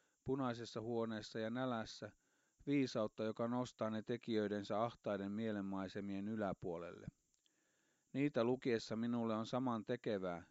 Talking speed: 105 wpm